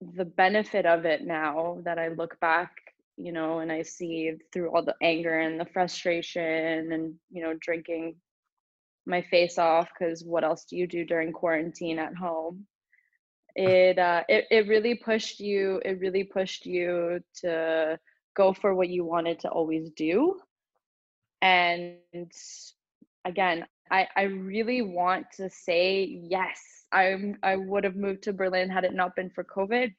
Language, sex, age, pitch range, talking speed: English, female, 20-39, 170-195 Hz, 160 wpm